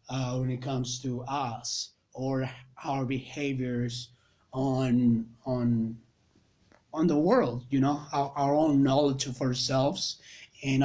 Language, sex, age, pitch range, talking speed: English, male, 30-49, 125-145 Hz, 125 wpm